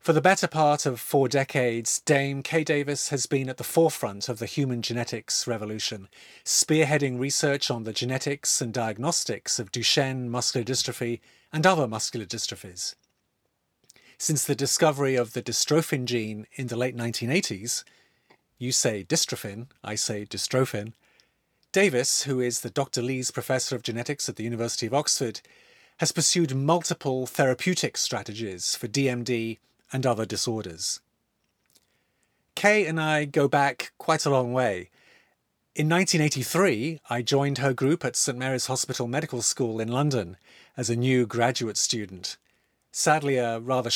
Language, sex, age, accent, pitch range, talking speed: English, male, 40-59, British, 120-150 Hz, 145 wpm